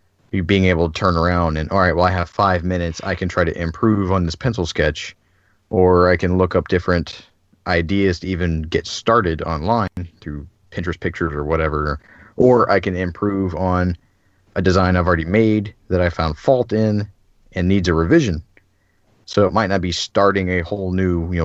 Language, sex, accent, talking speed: English, male, American, 195 wpm